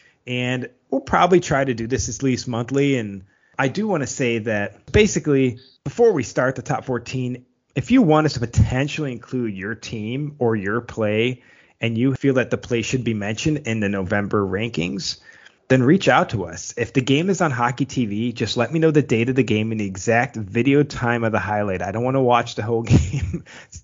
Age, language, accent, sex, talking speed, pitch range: 20-39, English, American, male, 215 wpm, 110-135 Hz